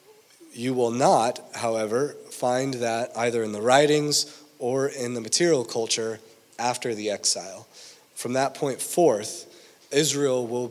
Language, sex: English, male